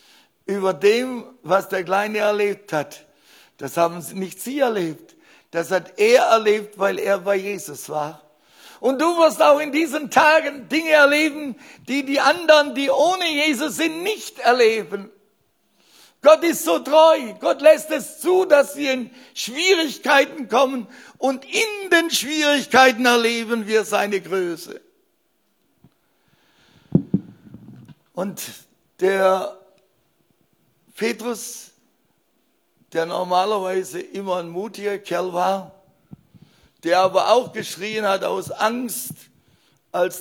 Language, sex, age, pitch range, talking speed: German, male, 60-79, 180-275 Hz, 120 wpm